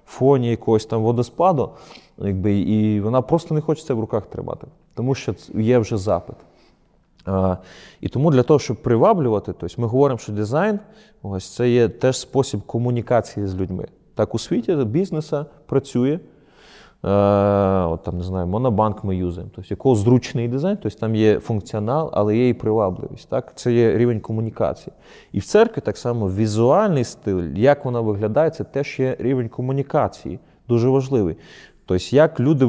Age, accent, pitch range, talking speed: 20-39, native, 100-130 Hz, 160 wpm